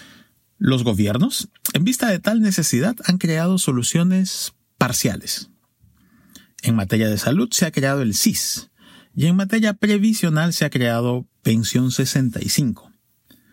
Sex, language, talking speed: male, Spanish, 130 wpm